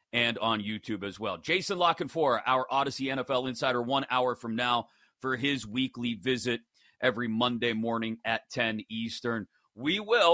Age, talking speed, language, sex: 40-59, 155 wpm, English, male